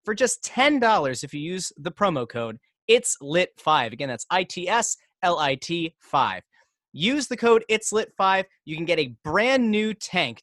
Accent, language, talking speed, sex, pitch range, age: American, English, 140 wpm, male, 145-210 Hz, 20-39